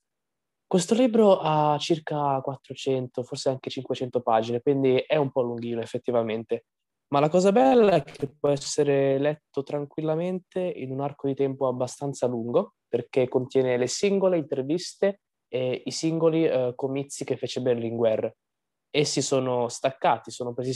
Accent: native